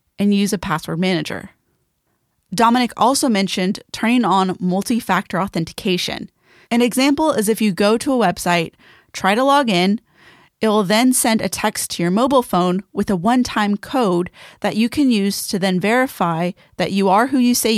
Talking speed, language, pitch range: 175 wpm, English, 185-240 Hz